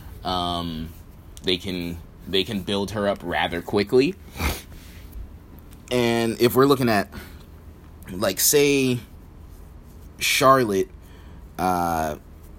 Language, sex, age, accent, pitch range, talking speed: English, male, 20-39, American, 80-115 Hz, 90 wpm